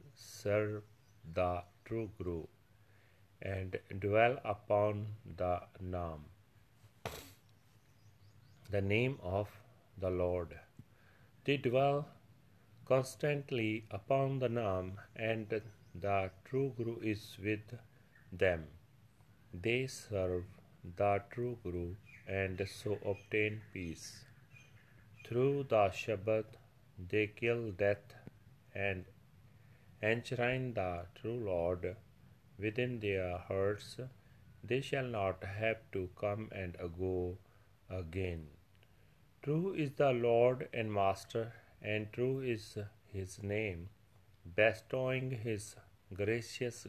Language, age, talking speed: Punjabi, 40-59, 95 wpm